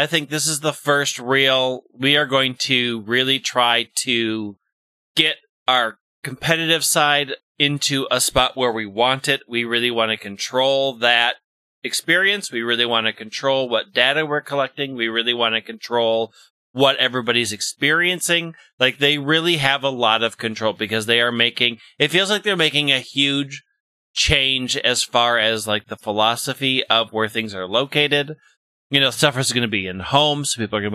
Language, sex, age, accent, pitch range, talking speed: English, male, 30-49, American, 115-145 Hz, 180 wpm